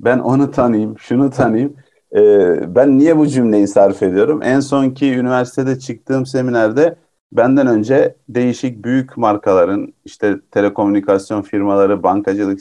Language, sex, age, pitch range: Turkish, male, 50-69, 120-150 Hz